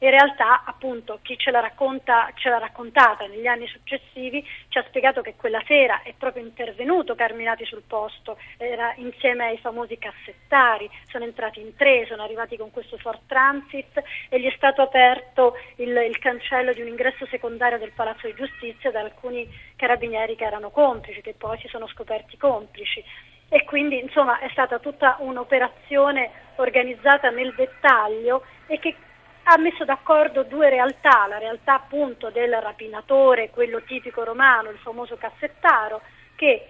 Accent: native